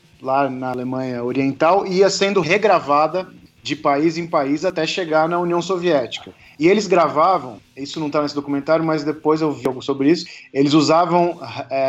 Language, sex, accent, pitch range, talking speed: Portuguese, male, Brazilian, 140-175 Hz, 170 wpm